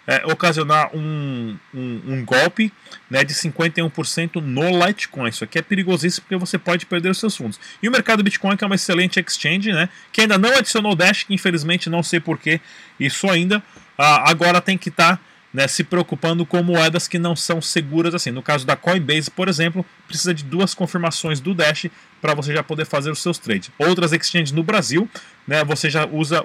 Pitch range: 155-190 Hz